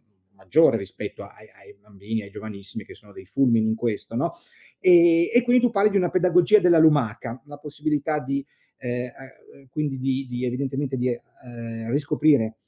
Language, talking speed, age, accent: Italian, 165 wpm, 40-59, native